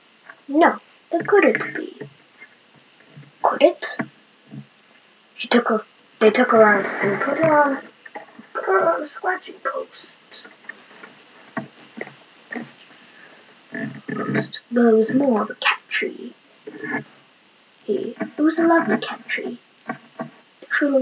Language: English